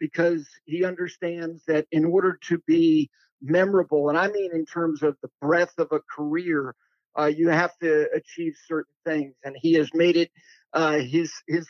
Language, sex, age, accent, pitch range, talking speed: English, male, 50-69, American, 160-195 Hz, 180 wpm